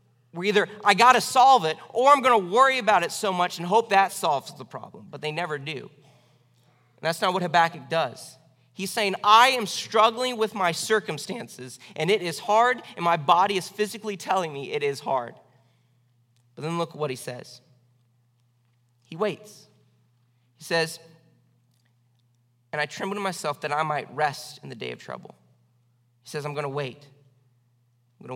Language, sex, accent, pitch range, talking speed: English, male, American, 125-195 Hz, 185 wpm